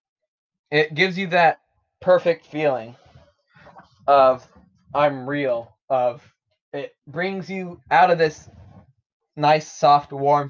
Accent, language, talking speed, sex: American, English, 110 wpm, male